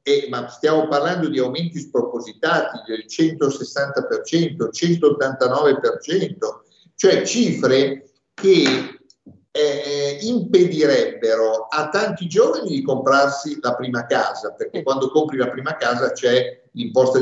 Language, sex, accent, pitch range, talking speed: Italian, male, native, 135-225 Hz, 110 wpm